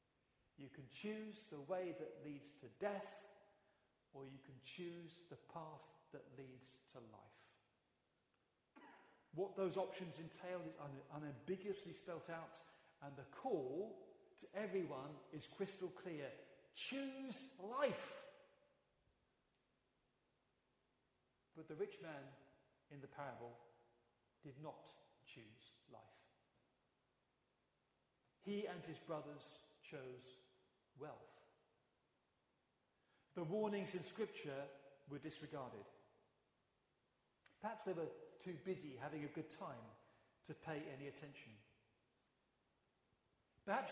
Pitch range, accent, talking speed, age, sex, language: 140-200 Hz, British, 100 wpm, 40-59, male, English